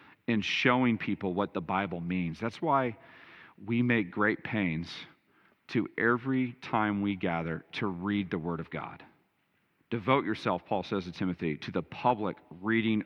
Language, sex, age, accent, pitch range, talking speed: English, male, 40-59, American, 95-120 Hz, 155 wpm